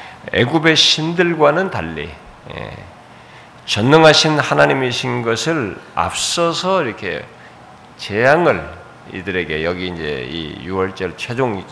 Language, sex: Korean, male